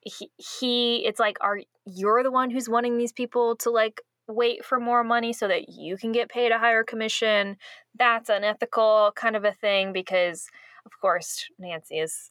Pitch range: 180-235 Hz